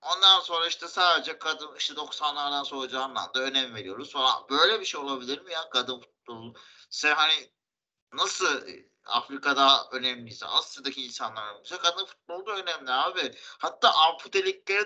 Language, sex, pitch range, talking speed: Turkish, male, 120-160 Hz, 135 wpm